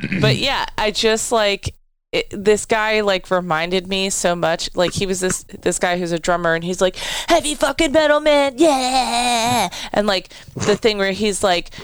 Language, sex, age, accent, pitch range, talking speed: English, female, 20-39, American, 175-220 Hz, 185 wpm